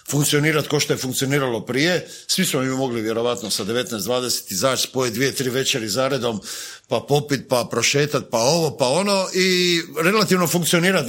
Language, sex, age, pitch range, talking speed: Croatian, male, 50-69, 135-175 Hz, 170 wpm